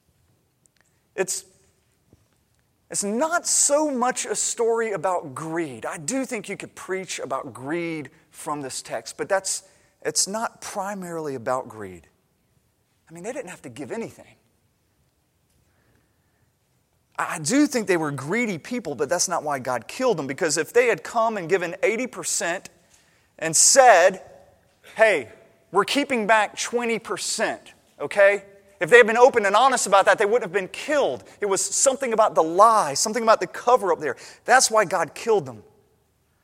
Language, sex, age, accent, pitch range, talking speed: English, male, 30-49, American, 175-260 Hz, 160 wpm